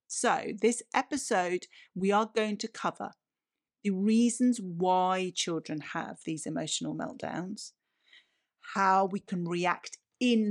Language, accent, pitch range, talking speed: English, British, 175-235 Hz, 120 wpm